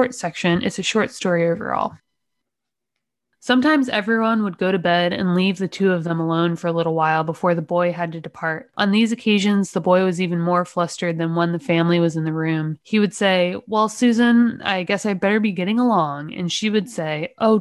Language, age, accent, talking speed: English, 20-39, American, 215 wpm